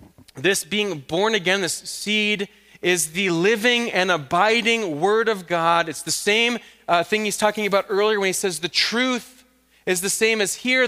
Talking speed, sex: 180 wpm, male